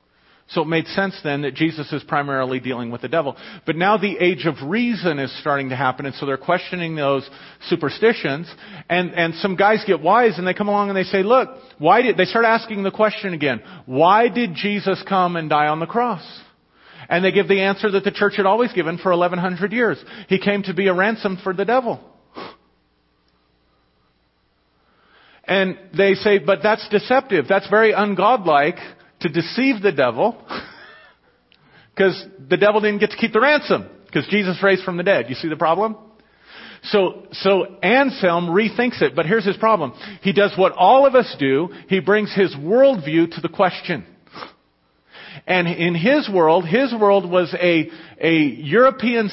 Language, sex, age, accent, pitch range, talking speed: English, male, 40-59, American, 160-205 Hz, 180 wpm